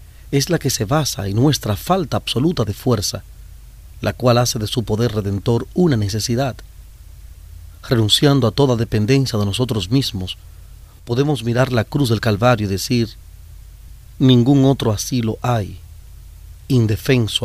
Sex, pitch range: male, 95-130 Hz